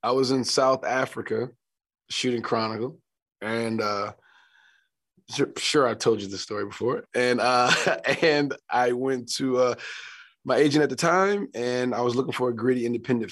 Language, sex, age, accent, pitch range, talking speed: English, male, 20-39, American, 105-120 Hz, 165 wpm